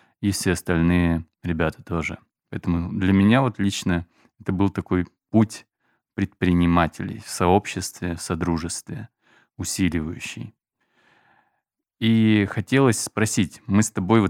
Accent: native